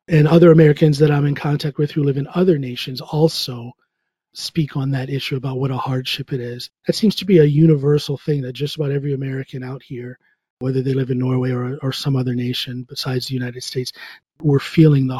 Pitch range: 130-155 Hz